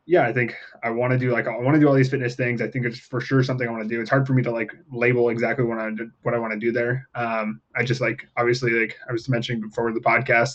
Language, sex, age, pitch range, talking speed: English, male, 20-39, 115-130 Hz, 305 wpm